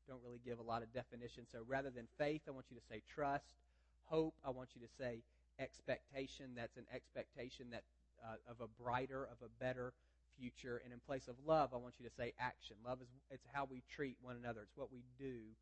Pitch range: 110-135 Hz